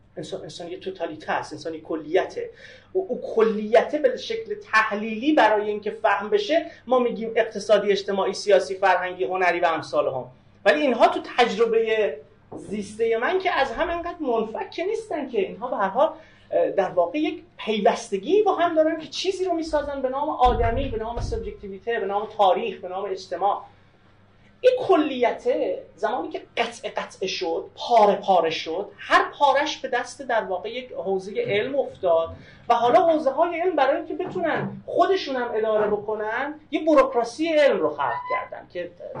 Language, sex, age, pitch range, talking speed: Persian, male, 30-49, 175-290 Hz, 160 wpm